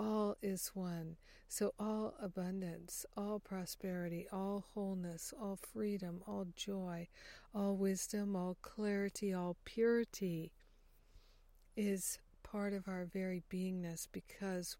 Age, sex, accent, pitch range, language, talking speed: 60-79, female, American, 175-200 Hz, English, 105 wpm